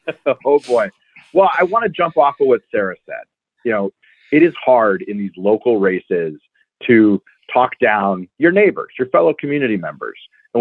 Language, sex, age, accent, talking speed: English, male, 40-59, American, 175 wpm